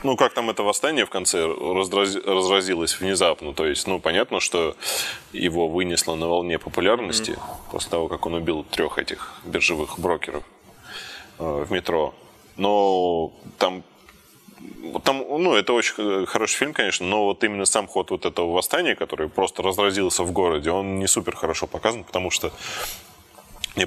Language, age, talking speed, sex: Russian, 20-39, 150 wpm, male